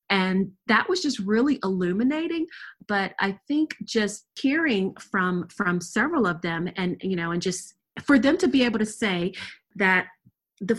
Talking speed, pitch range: 165 wpm, 180-220 Hz